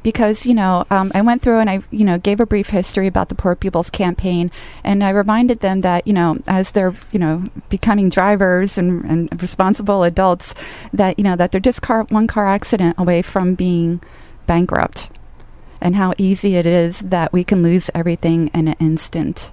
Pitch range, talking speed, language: 175-210 Hz, 195 wpm, English